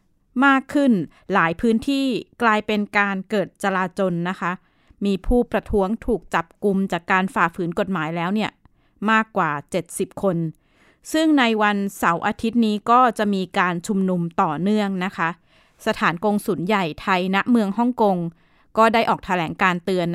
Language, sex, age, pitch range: Thai, female, 20-39, 180-220 Hz